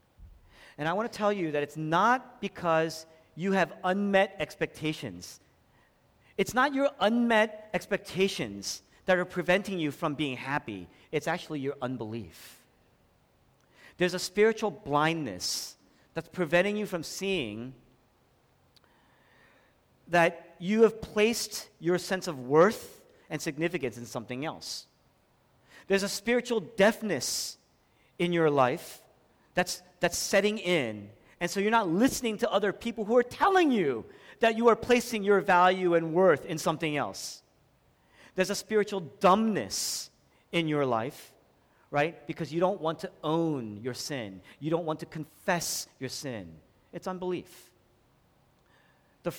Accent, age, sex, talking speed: American, 40-59, male, 135 wpm